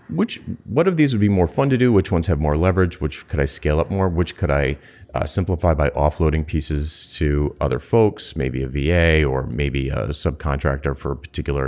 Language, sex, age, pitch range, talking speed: English, male, 30-49, 70-90 Hz, 215 wpm